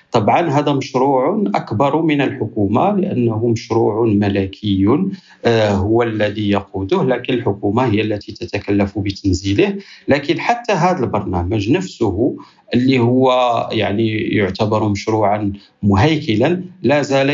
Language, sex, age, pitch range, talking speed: Arabic, male, 50-69, 105-130 Hz, 105 wpm